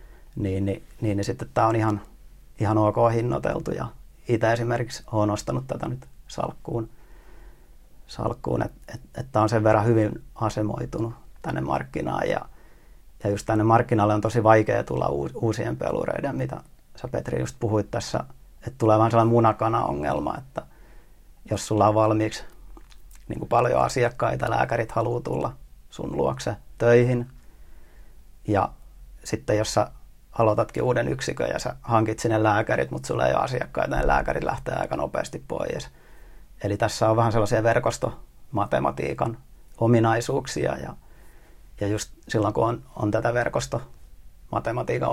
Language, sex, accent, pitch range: Finnish, male, native, 100-115 Hz